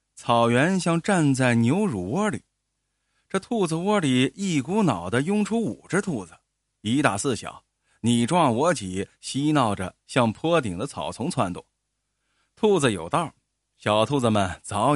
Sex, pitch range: male, 110-185 Hz